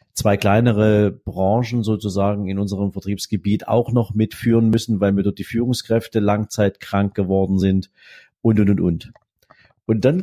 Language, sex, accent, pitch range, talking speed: German, male, German, 95-115 Hz, 145 wpm